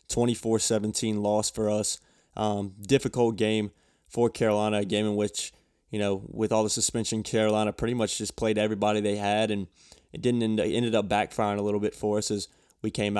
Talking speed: 180 wpm